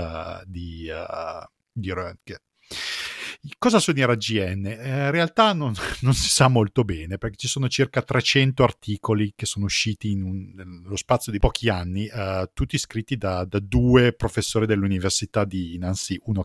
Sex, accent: male, native